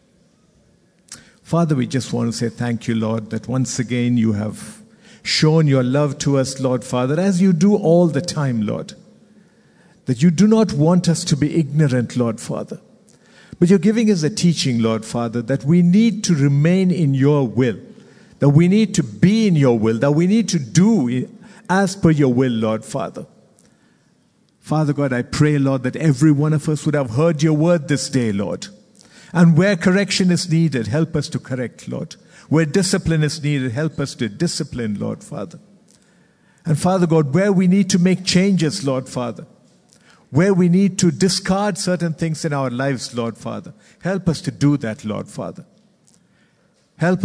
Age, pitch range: 50-69, 130-185 Hz